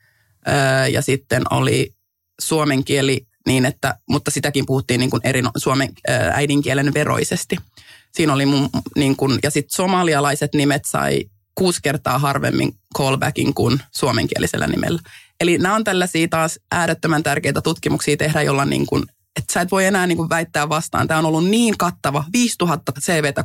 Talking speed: 145 wpm